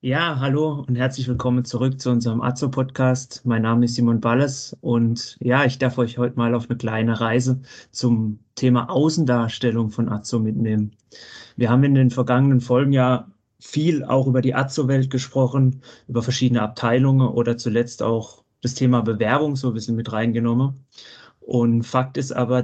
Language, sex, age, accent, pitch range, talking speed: German, male, 30-49, German, 120-130 Hz, 165 wpm